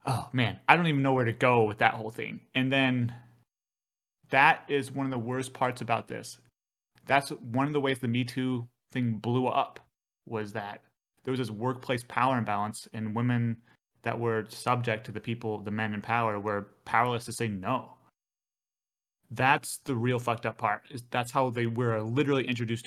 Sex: male